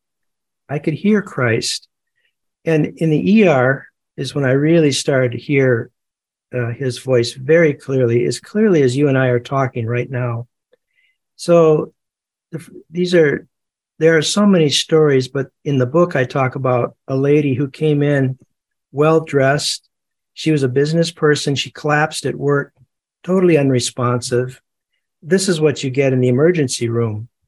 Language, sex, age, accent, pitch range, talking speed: English, male, 60-79, American, 130-160 Hz, 155 wpm